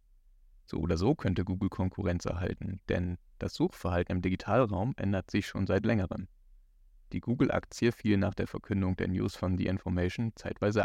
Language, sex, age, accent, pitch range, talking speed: German, male, 40-59, German, 90-105 Hz, 160 wpm